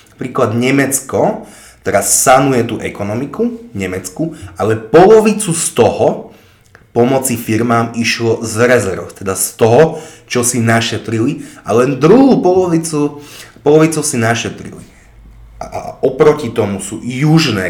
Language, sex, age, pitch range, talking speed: Slovak, male, 30-49, 105-150 Hz, 115 wpm